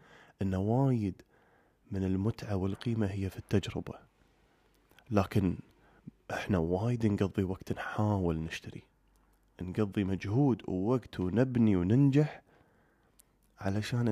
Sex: male